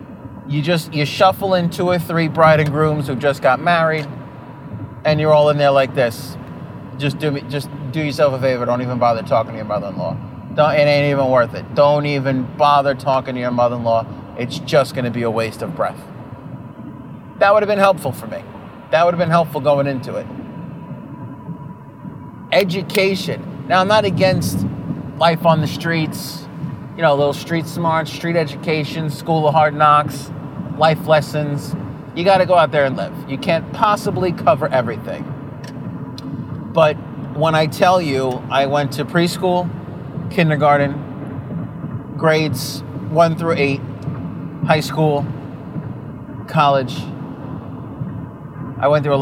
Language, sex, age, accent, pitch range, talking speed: English, male, 30-49, American, 140-160 Hz, 155 wpm